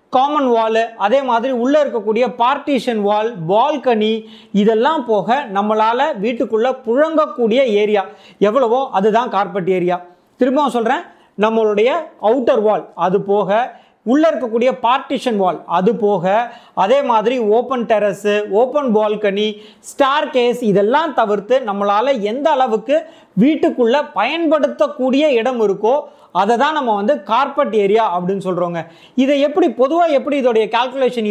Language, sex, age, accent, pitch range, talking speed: Tamil, male, 30-49, native, 205-270 Hz, 115 wpm